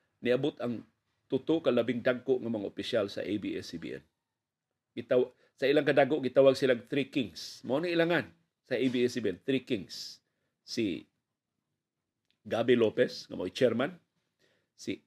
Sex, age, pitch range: male, 40-59, 115-135 Hz